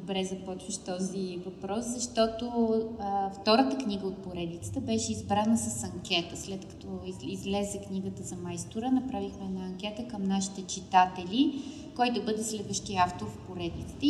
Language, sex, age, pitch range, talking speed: Bulgarian, female, 30-49, 190-265 Hz, 140 wpm